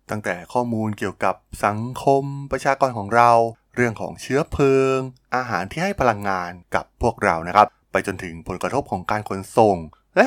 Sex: male